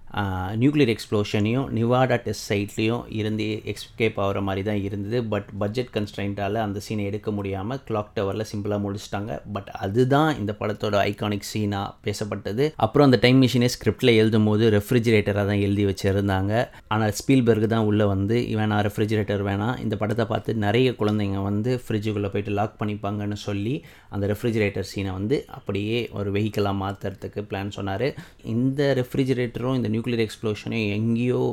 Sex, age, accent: male, 30-49, native